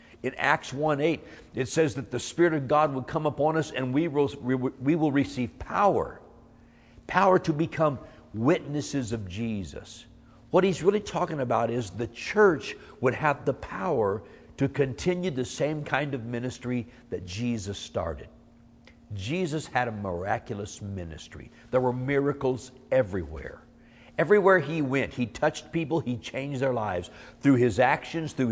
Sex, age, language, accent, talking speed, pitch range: male, 60-79, English, American, 150 wpm, 115-150 Hz